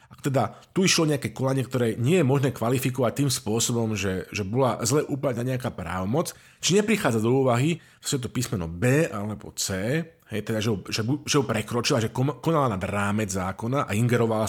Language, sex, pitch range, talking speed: Slovak, male, 105-145 Hz, 180 wpm